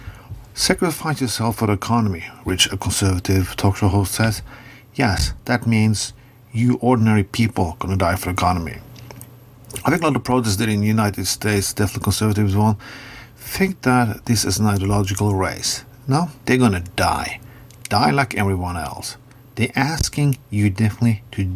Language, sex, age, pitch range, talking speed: English, male, 50-69, 105-125 Hz, 165 wpm